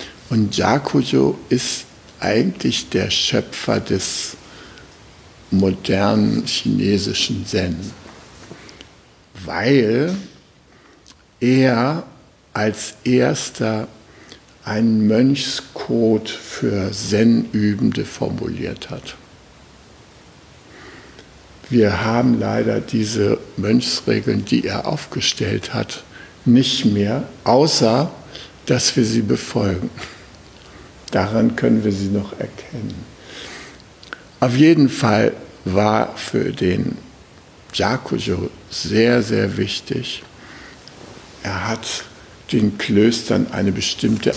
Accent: German